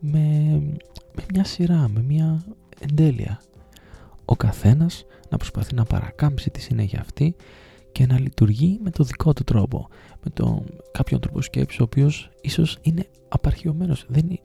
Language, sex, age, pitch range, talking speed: Greek, male, 20-39, 100-135 Hz, 145 wpm